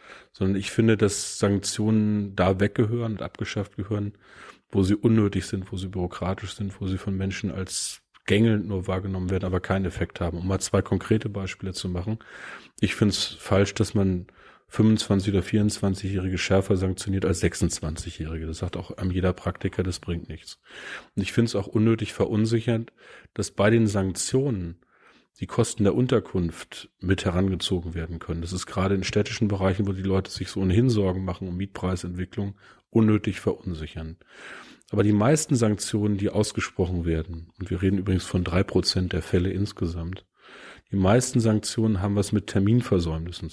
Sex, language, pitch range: male, German, 95-105 Hz